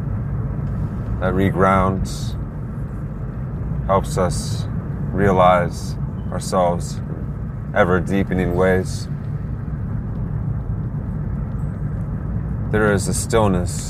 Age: 30-49